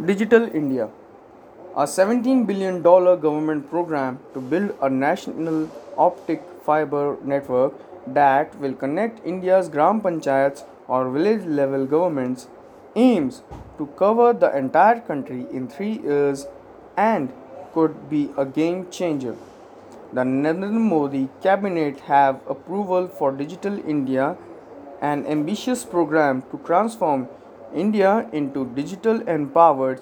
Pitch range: 140-200 Hz